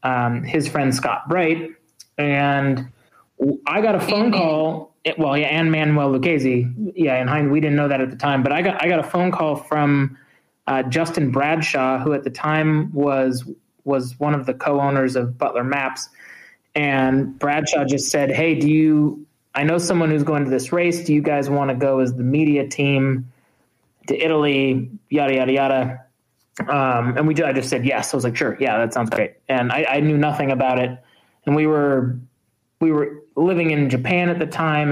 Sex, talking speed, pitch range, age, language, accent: male, 195 wpm, 130-155 Hz, 20-39, English, American